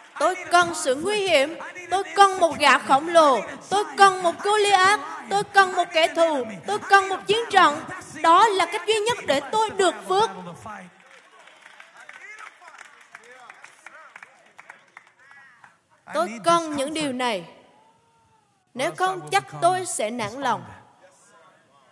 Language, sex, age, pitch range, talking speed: Vietnamese, female, 20-39, 255-380 Hz, 125 wpm